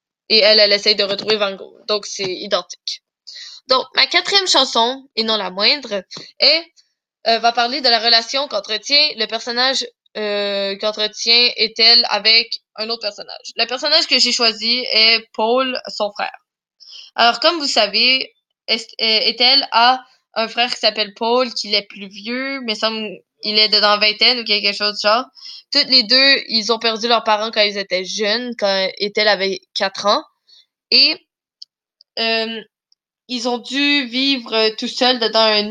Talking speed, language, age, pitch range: 170 wpm, English, 20-39, 210-250 Hz